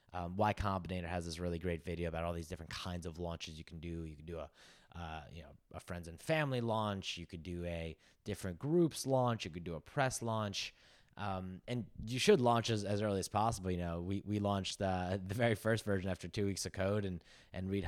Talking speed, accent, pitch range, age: 240 wpm, American, 85-110 Hz, 20-39